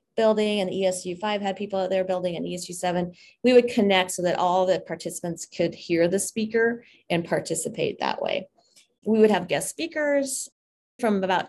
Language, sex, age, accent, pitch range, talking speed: English, female, 30-49, American, 175-205 Hz, 170 wpm